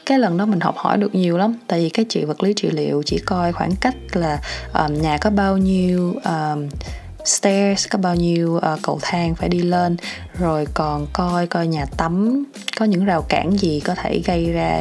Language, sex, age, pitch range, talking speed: Vietnamese, female, 20-39, 155-195 Hz, 210 wpm